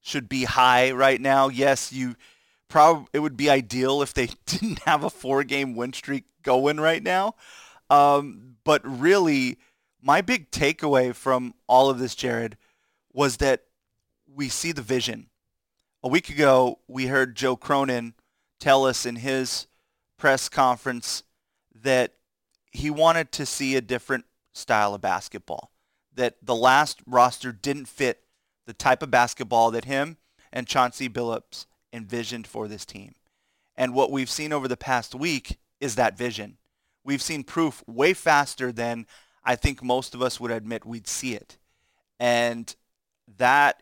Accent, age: American, 30-49